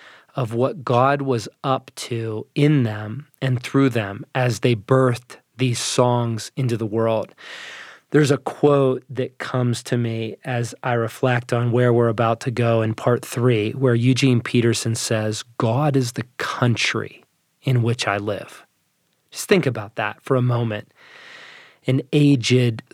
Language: English